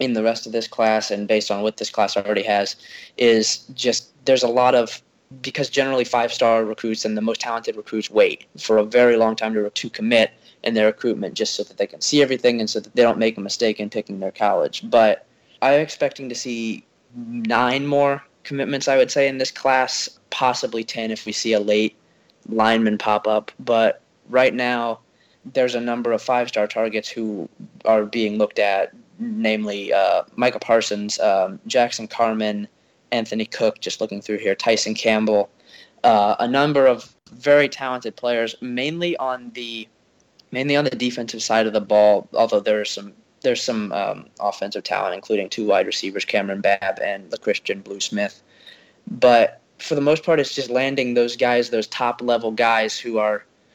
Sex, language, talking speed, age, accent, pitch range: male, English, 185 wpm, 20-39, American, 110-130 Hz